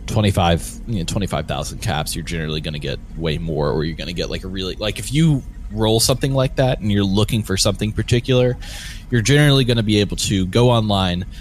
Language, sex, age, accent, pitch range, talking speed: English, male, 20-39, American, 85-115 Hz, 230 wpm